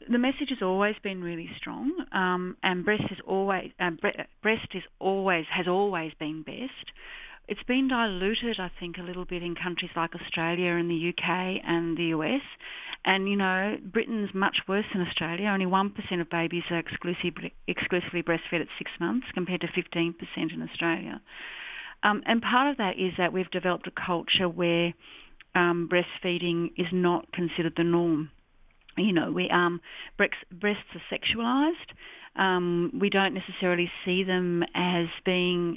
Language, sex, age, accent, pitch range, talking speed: English, female, 40-59, Australian, 170-200 Hz, 170 wpm